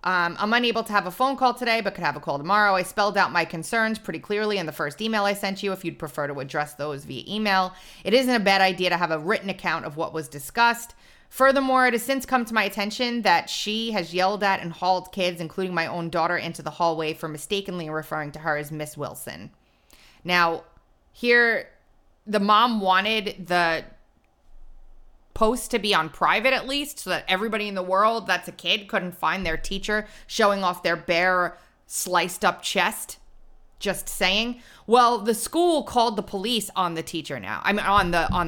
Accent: American